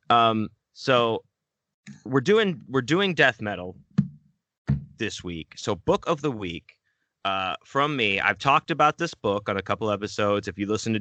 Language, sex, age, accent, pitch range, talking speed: English, male, 30-49, American, 95-130 Hz, 170 wpm